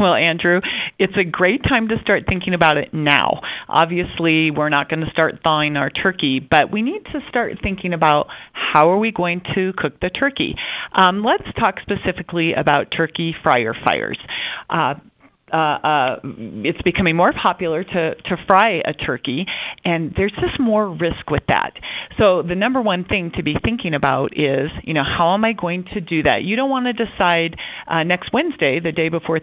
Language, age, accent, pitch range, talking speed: English, 40-59, American, 155-195 Hz, 190 wpm